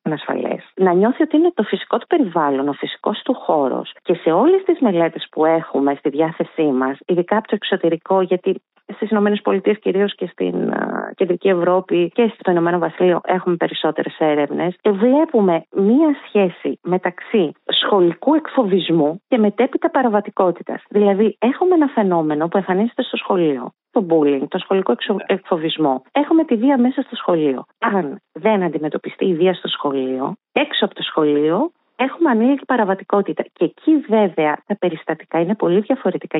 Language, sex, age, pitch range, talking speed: Greek, female, 30-49, 165-230 Hz, 155 wpm